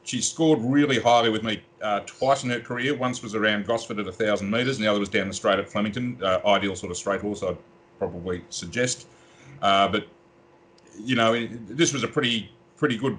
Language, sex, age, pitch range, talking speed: English, male, 40-59, 100-135 Hz, 215 wpm